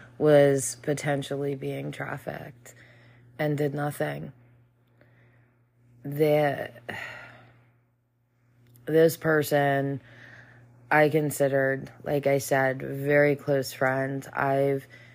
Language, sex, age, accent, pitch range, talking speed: English, female, 20-39, American, 125-150 Hz, 70 wpm